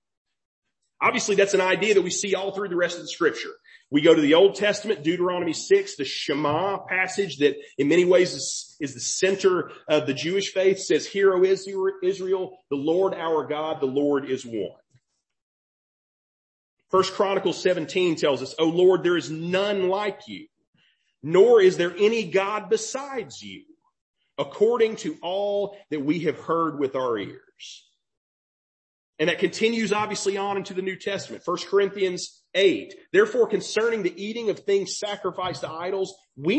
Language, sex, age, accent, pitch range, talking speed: English, male, 40-59, American, 175-225 Hz, 165 wpm